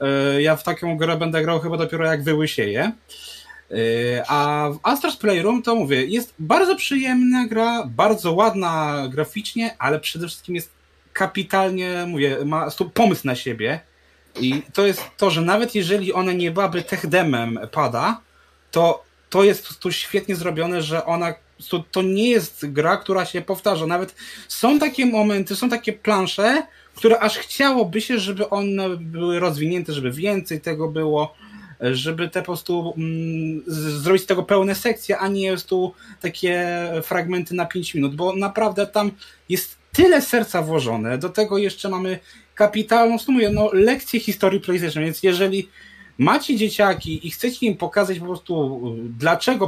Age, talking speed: 20-39, 155 wpm